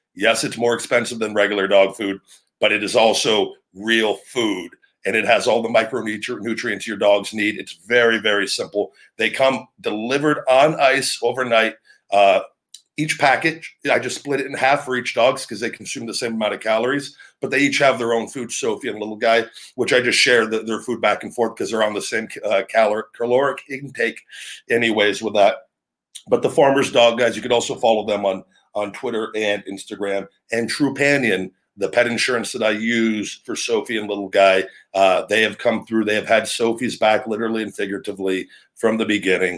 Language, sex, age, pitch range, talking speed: English, male, 50-69, 100-120 Hz, 200 wpm